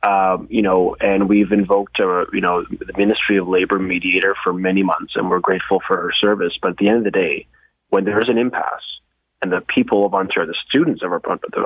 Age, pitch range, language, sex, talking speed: 30-49, 95-110 Hz, English, male, 225 wpm